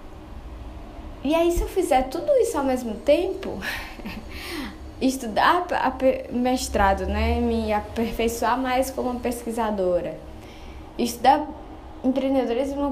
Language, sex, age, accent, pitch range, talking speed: Portuguese, female, 10-29, Brazilian, 185-265 Hz, 95 wpm